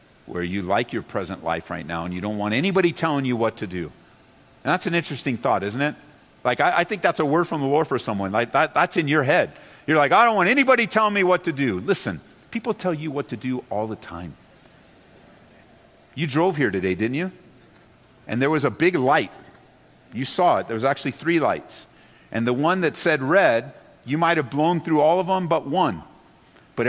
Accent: American